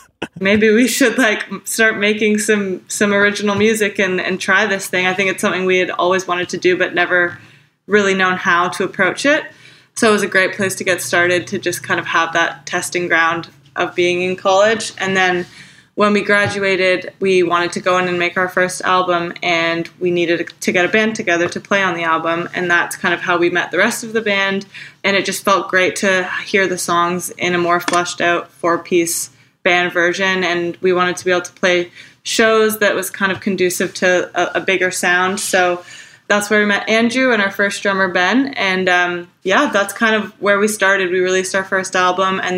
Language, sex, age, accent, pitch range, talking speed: English, female, 20-39, American, 180-205 Hz, 220 wpm